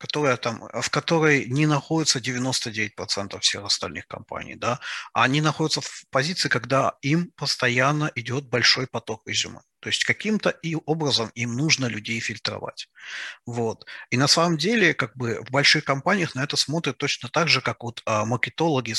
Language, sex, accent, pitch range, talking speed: Ukrainian, male, native, 115-140 Hz, 160 wpm